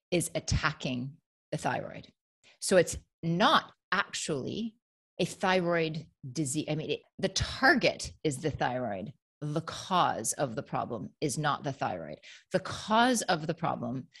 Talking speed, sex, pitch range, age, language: 135 wpm, female, 145-180 Hz, 30-49, English